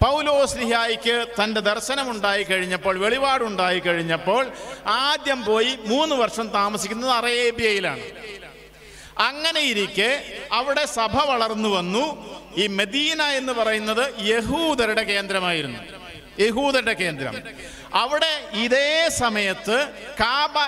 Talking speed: 90 wpm